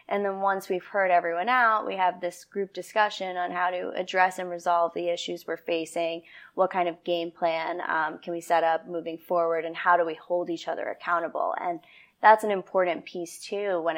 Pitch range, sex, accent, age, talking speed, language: 170-190 Hz, female, American, 20-39, 210 wpm, English